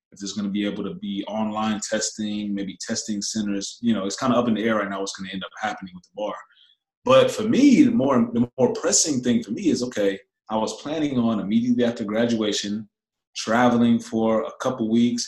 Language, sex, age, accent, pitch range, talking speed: English, male, 20-39, American, 100-125 Hz, 220 wpm